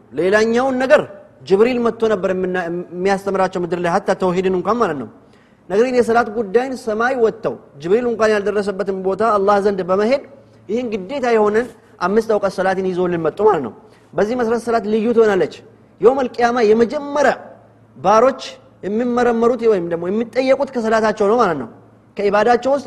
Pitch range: 195-235 Hz